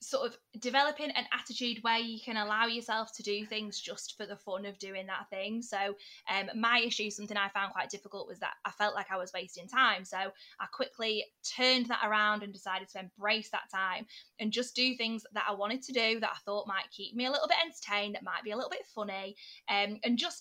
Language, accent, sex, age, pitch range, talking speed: English, British, female, 20-39, 200-245 Hz, 235 wpm